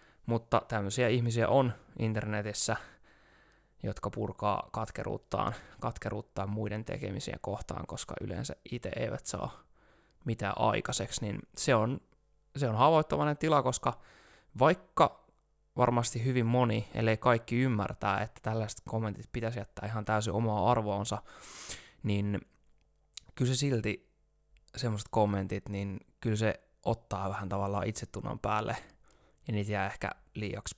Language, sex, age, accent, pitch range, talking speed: Finnish, male, 20-39, native, 105-125 Hz, 120 wpm